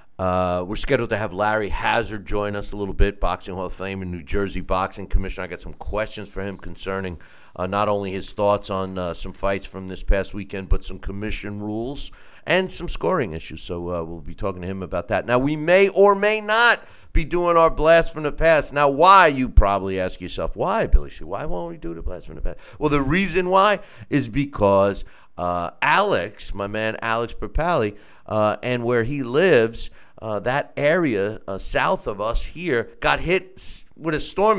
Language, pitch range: English, 95-150 Hz